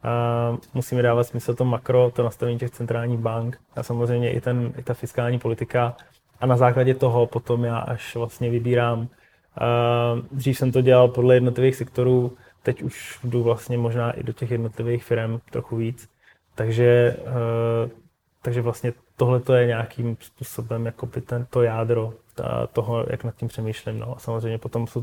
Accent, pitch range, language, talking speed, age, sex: native, 115-125 Hz, Czech, 170 wpm, 20-39, male